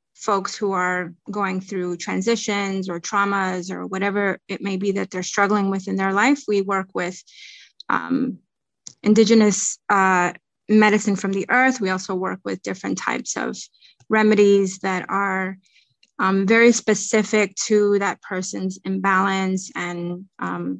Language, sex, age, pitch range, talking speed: English, female, 20-39, 190-210 Hz, 140 wpm